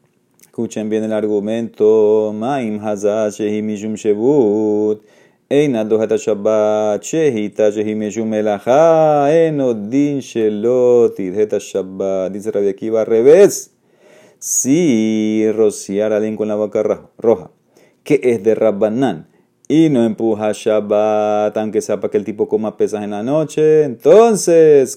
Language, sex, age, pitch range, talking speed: Spanish, male, 30-49, 105-145 Hz, 125 wpm